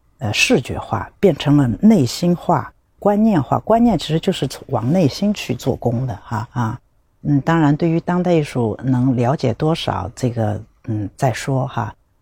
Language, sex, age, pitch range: Chinese, female, 50-69, 110-160 Hz